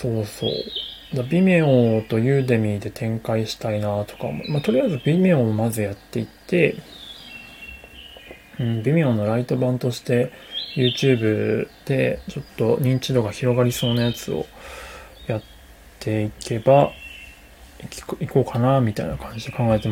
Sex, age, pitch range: male, 20-39, 110-140 Hz